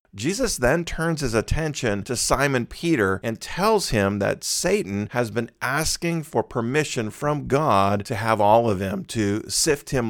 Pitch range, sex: 105-135 Hz, male